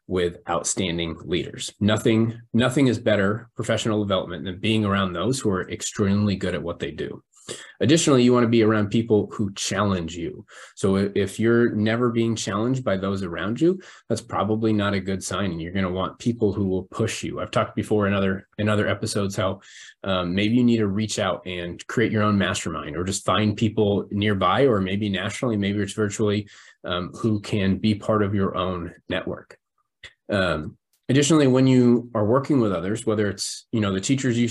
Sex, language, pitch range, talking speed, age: male, English, 100-115 Hz, 195 wpm, 20-39